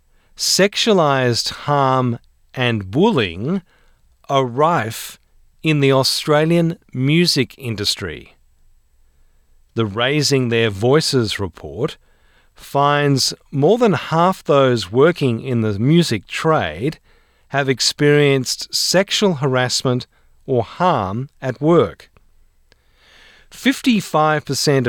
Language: English